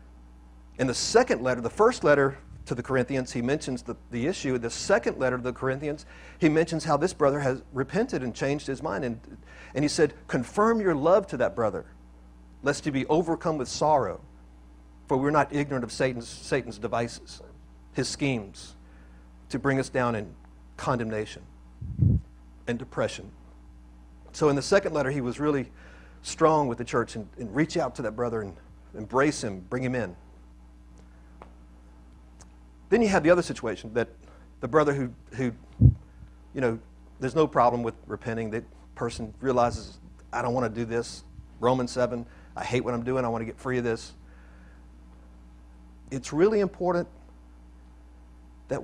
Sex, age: male, 50-69